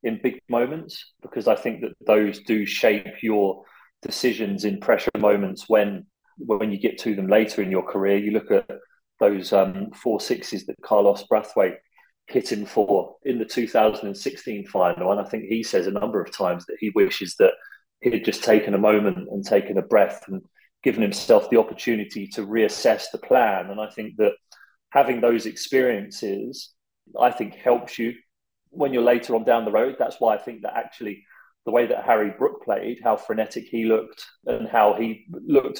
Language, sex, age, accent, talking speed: English, male, 30-49, British, 190 wpm